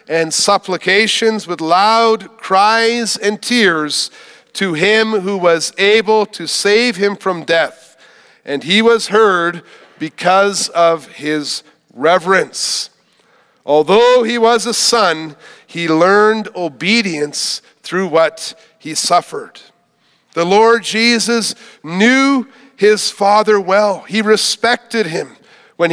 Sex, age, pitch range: male, 40-59, 175-225 Hz